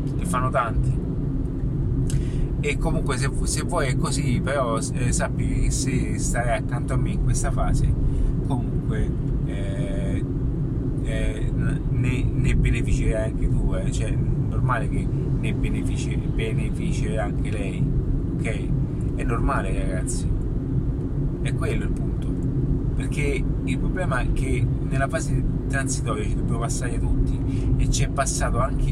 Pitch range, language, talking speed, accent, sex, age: 130-140 Hz, Italian, 130 wpm, native, male, 30-49